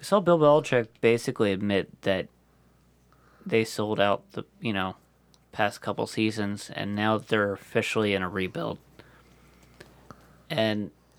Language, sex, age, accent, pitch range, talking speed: English, male, 20-39, American, 85-110 Hz, 135 wpm